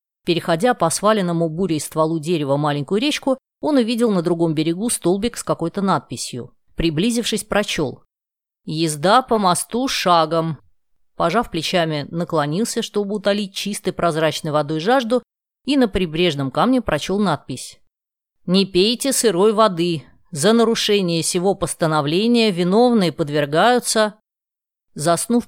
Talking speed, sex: 120 wpm, female